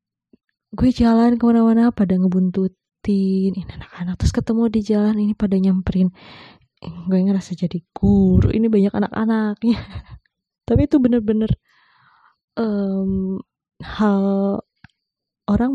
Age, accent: 20-39, native